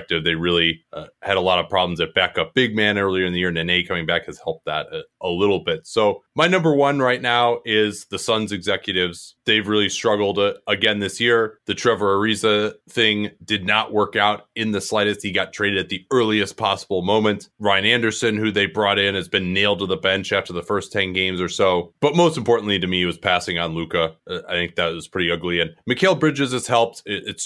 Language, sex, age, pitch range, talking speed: English, male, 30-49, 90-110 Hz, 225 wpm